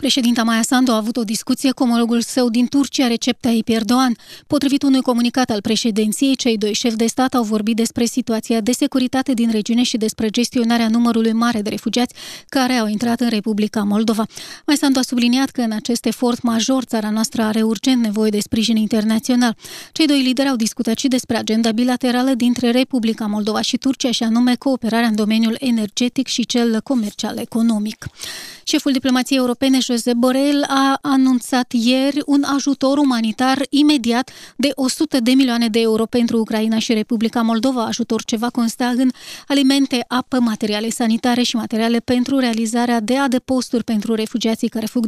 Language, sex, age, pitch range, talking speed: Romanian, female, 20-39, 225-260 Hz, 170 wpm